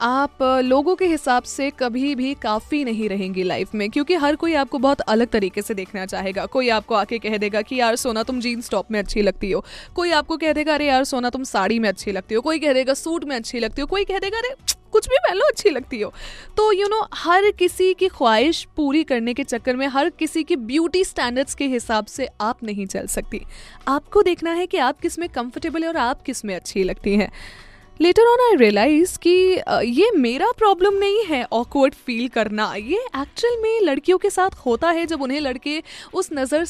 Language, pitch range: Hindi, 235-355 Hz